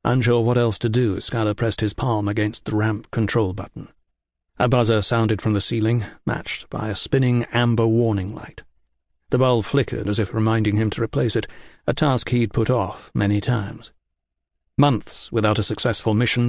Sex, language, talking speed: male, English, 180 wpm